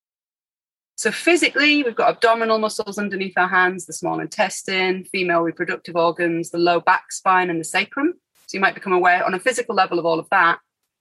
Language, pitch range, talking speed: English, 175-220 Hz, 190 wpm